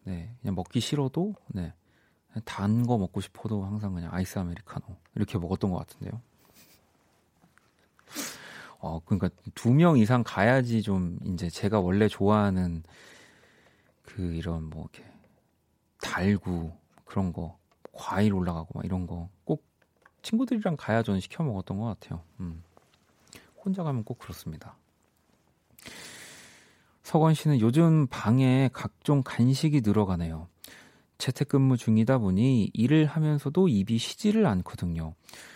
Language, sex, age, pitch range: Korean, male, 40-59, 95-130 Hz